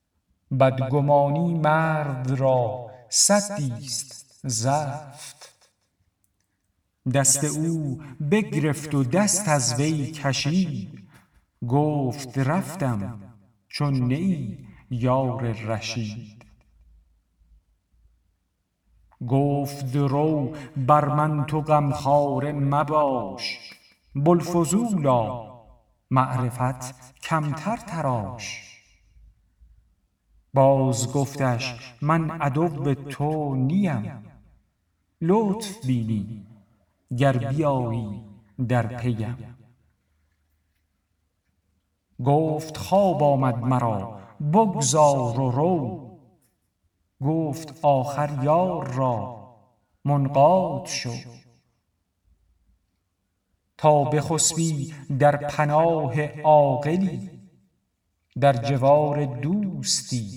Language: Persian